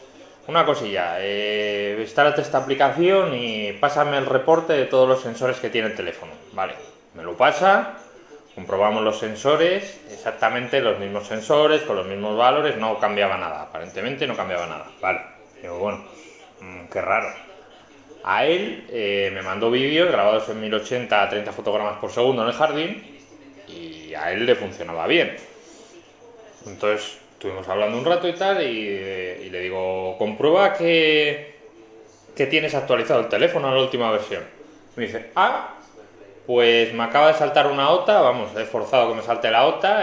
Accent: Spanish